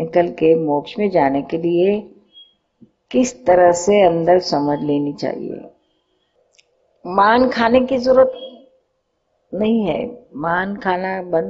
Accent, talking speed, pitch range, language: native, 120 wpm, 175-225 Hz, Hindi